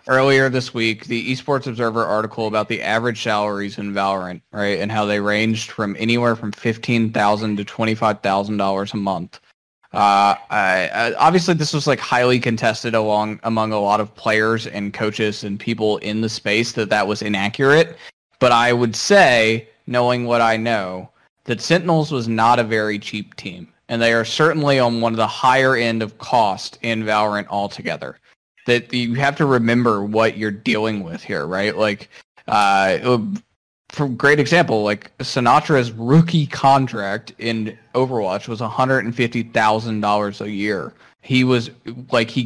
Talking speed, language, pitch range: 155 wpm, English, 105-130 Hz